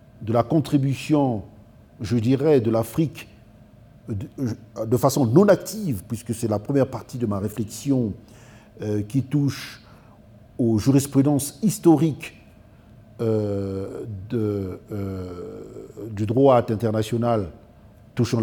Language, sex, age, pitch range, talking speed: English, male, 50-69, 110-150 Hz, 100 wpm